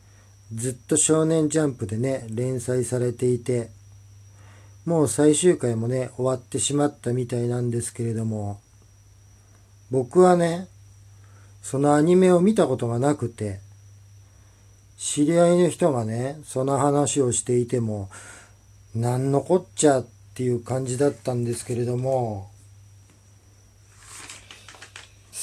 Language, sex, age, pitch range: Japanese, male, 40-59, 100-135 Hz